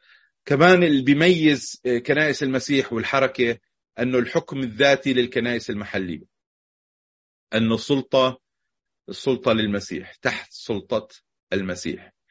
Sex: male